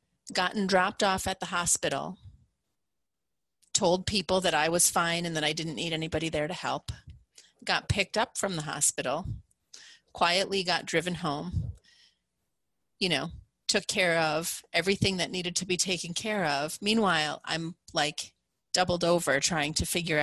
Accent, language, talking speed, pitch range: American, English, 155 wpm, 155-190 Hz